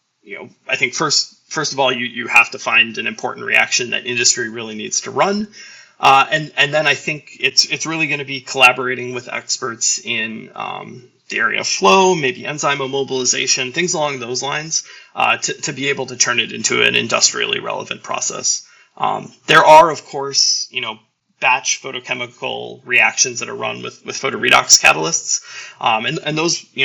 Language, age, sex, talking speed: English, 20-39, male, 190 wpm